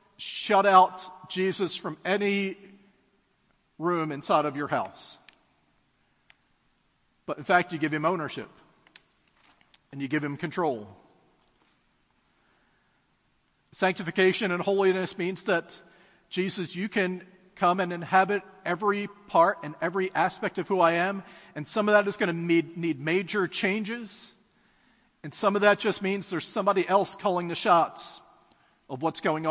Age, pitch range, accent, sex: 40-59, 160-200 Hz, American, male